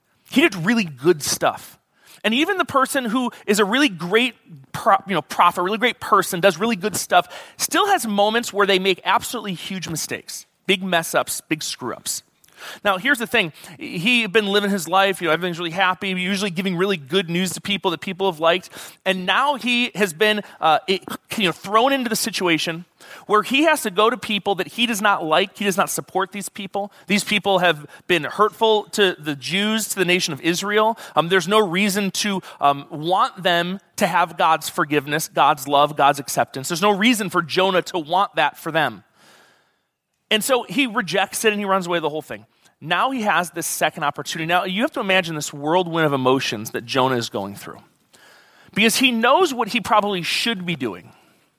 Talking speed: 200 wpm